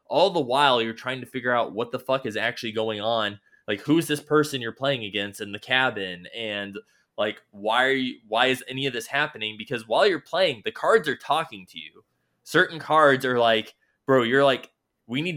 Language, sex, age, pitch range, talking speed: English, male, 20-39, 110-140 Hz, 210 wpm